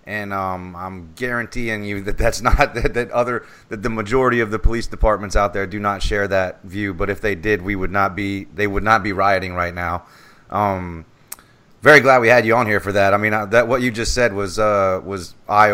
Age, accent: 30-49, American